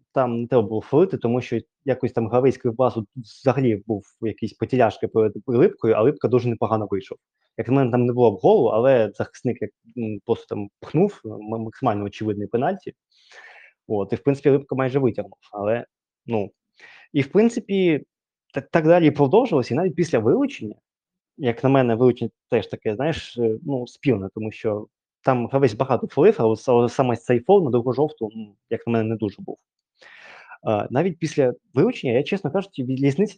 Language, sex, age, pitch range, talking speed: Ukrainian, male, 20-39, 115-150 Hz, 175 wpm